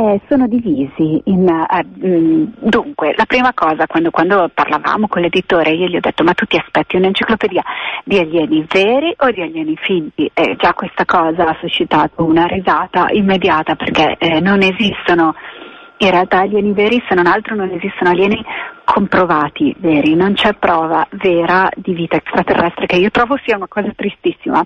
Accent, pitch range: native, 170-225 Hz